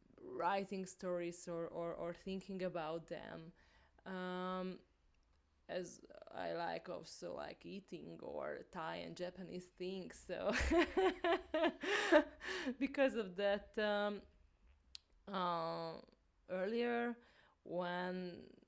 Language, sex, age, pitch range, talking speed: English, female, 20-39, 165-200 Hz, 90 wpm